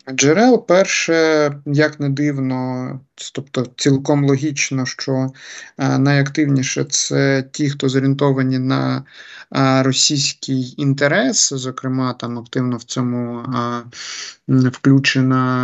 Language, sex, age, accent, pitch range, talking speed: Ukrainian, male, 20-39, native, 125-145 Hz, 90 wpm